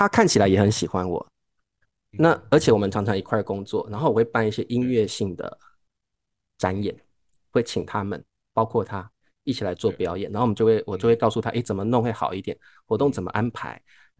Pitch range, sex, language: 95-120 Hz, male, Chinese